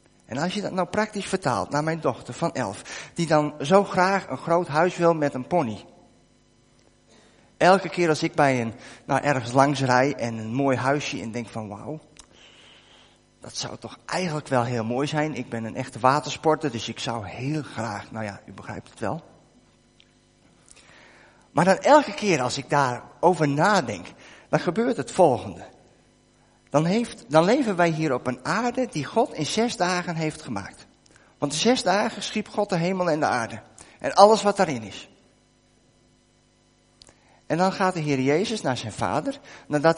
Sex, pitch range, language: male, 125-185 Hz, Dutch